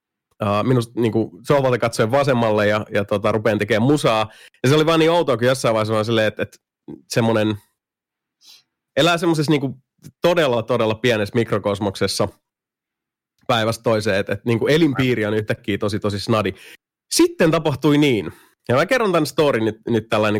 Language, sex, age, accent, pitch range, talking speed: Finnish, male, 30-49, native, 110-160 Hz, 165 wpm